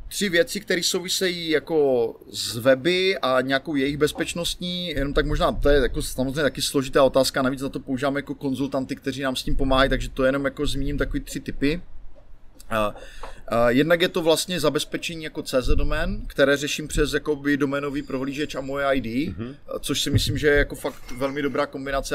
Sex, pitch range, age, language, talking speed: male, 130-150 Hz, 30-49, Czech, 180 wpm